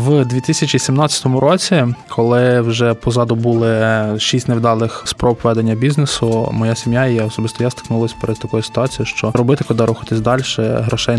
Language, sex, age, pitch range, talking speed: Ukrainian, male, 20-39, 115-135 Hz, 150 wpm